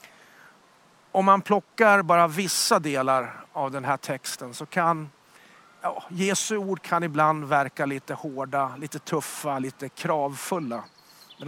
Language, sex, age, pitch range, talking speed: Swedish, male, 40-59, 140-170 Hz, 130 wpm